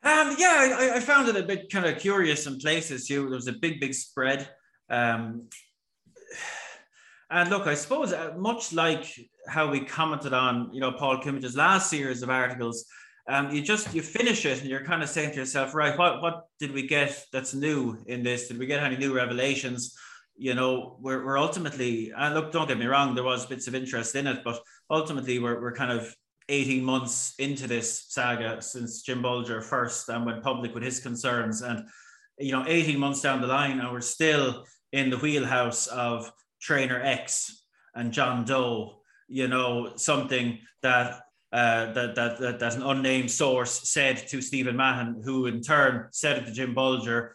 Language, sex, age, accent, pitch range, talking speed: English, male, 20-39, Irish, 120-145 Hz, 195 wpm